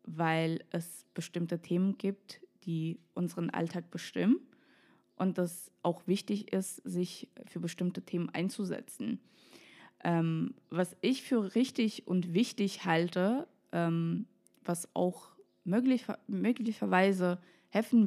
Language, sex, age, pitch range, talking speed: German, female, 20-39, 165-190 Hz, 110 wpm